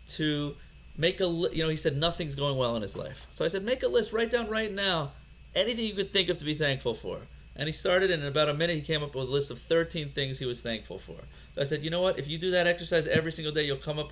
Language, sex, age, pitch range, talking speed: English, male, 30-49, 135-170 Hz, 295 wpm